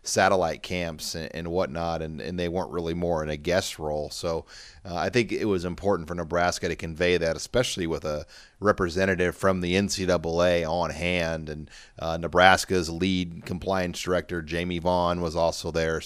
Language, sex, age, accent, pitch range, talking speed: English, male, 30-49, American, 85-105 Hz, 170 wpm